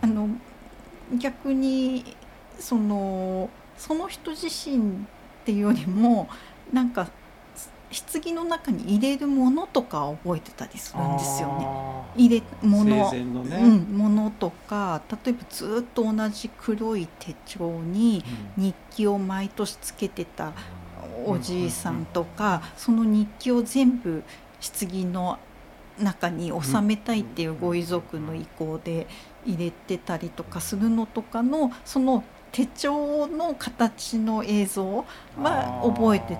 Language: Japanese